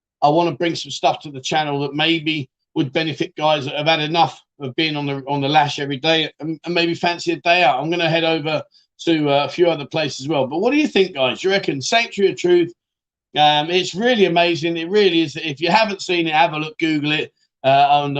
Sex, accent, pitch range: male, British, 145-190 Hz